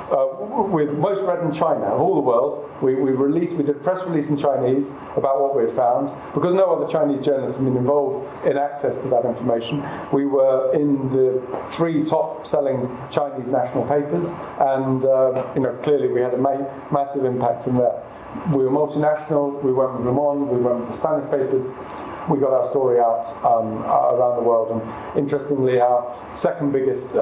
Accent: British